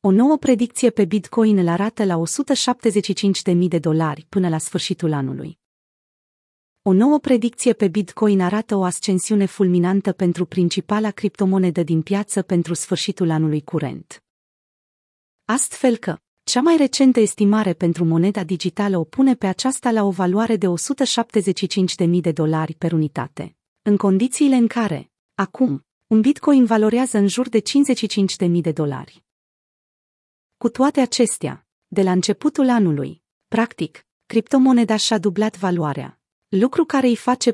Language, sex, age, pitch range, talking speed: Romanian, female, 30-49, 180-235 Hz, 135 wpm